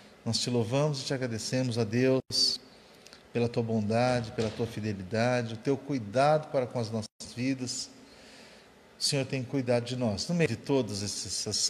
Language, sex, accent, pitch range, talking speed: Portuguese, male, Brazilian, 115-135 Hz, 170 wpm